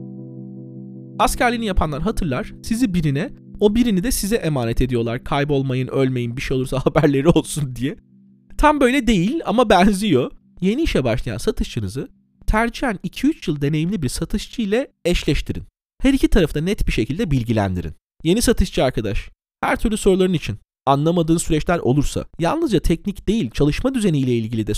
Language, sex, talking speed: Turkish, male, 150 wpm